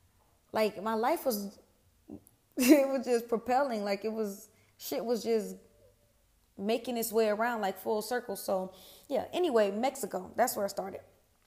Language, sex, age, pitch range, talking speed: Amharic, female, 20-39, 190-240 Hz, 150 wpm